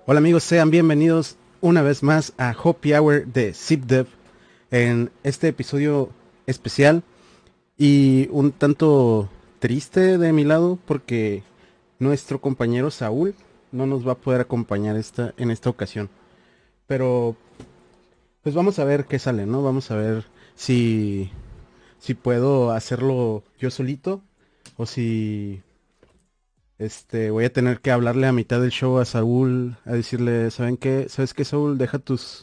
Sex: male